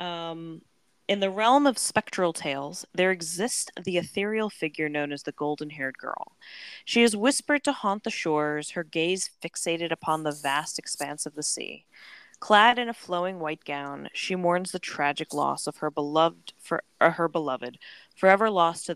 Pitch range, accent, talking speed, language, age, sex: 155-225 Hz, American, 165 wpm, English, 20-39, female